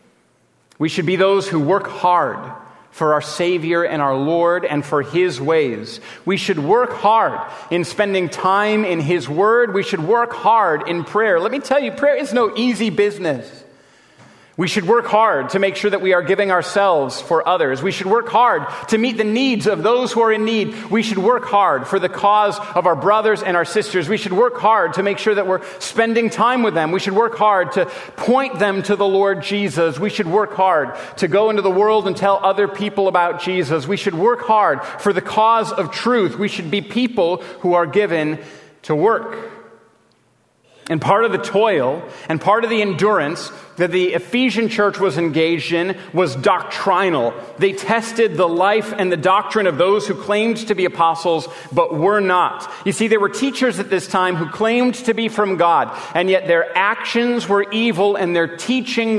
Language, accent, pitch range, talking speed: English, American, 175-215 Hz, 200 wpm